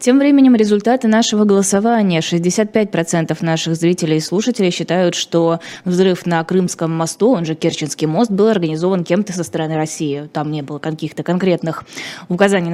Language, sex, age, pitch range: Russian, female, 20-39, 160-200 Hz